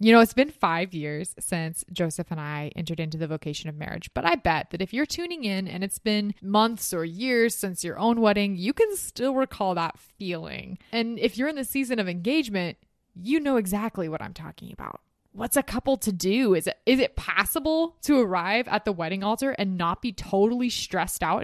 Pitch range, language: 175-245 Hz, English